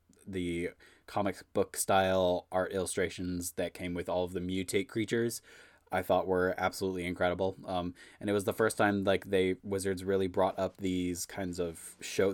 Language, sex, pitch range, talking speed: English, male, 90-100 Hz, 175 wpm